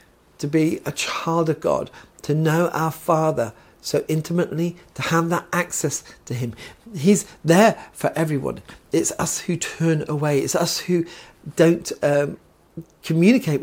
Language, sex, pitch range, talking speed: English, male, 135-170 Hz, 145 wpm